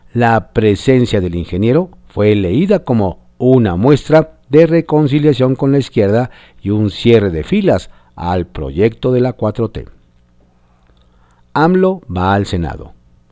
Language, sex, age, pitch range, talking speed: Spanish, male, 50-69, 85-140 Hz, 125 wpm